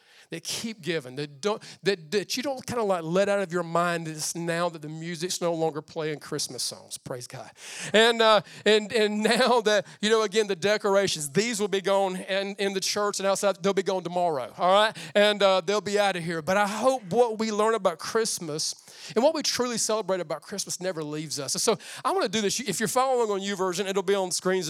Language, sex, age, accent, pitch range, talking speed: English, male, 40-59, American, 170-210 Hz, 240 wpm